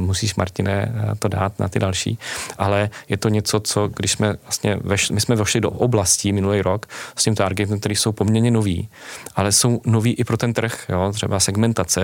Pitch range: 95-105 Hz